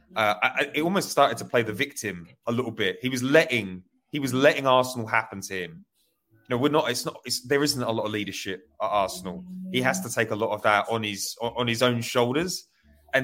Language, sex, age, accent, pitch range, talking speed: English, male, 30-49, British, 115-150 Hz, 240 wpm